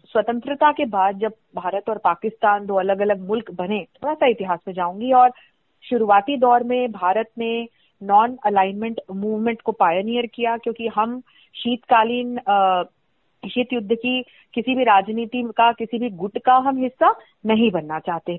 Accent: native